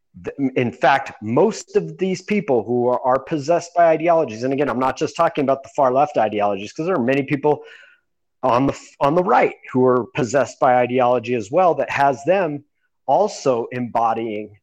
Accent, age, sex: American, 30-49, male